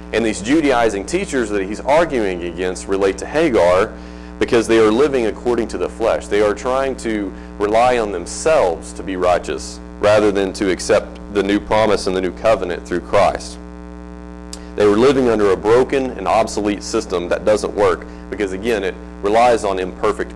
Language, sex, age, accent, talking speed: English, male, 30-49, American, 175 wpm